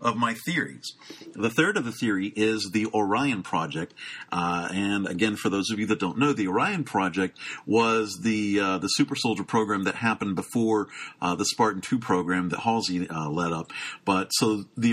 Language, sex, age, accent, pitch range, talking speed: English, male, 50-69, American, 90-115 Hz, 195 wpm